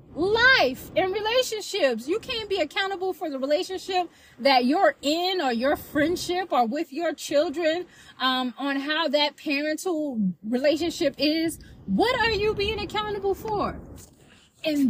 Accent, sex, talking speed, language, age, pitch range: American, female, 135 wpm, English, 20-39, 245-330 Hz